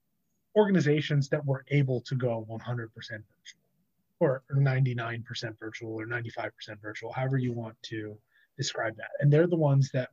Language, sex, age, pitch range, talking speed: English, male, 20-39, 120-150 Hz, 150 wpm